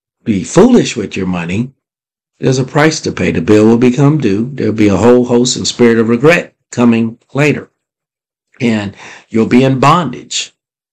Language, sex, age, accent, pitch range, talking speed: English, male, 50-69, American, 110-130 Hz, 170 wpm